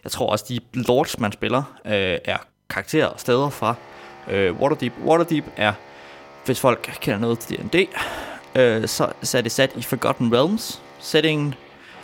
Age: 20-39